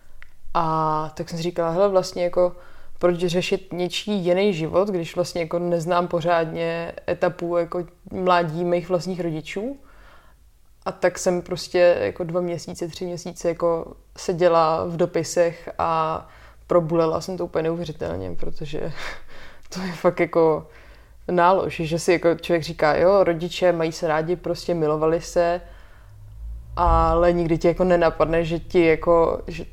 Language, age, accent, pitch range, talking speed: Czech, 20-39, native, 165-185 Hz, 145 wpm